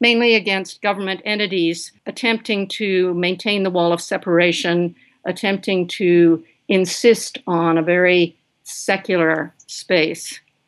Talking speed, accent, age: 105 wpm, American, 50-69